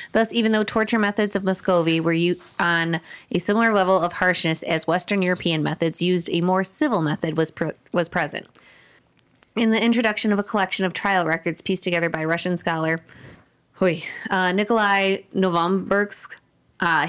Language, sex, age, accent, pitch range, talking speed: English, female, 20-39, American, 160-195 Hz, 160 wpm